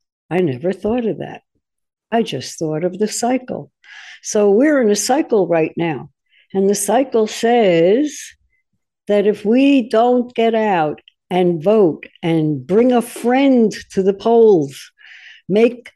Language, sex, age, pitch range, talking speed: English, female, 60-79, 180-245 Hz, 145 wpm